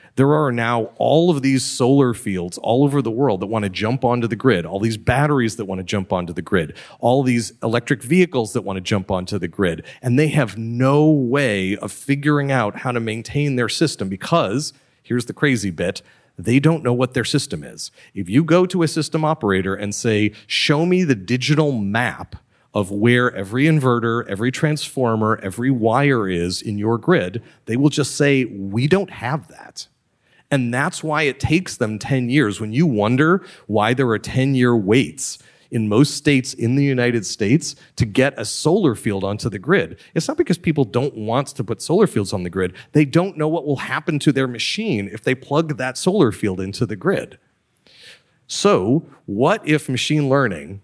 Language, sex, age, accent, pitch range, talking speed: English, male, 40-59, American, 110-145 Hz, 195 wpm